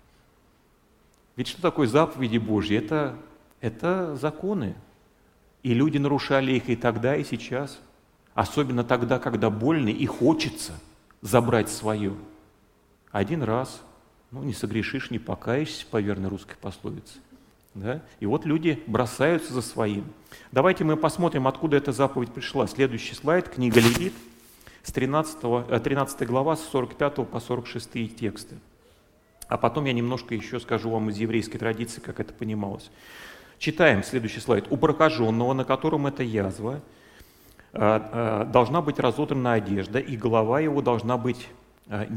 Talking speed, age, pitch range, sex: 130 wpm, 40-59, 110-140 Hz, male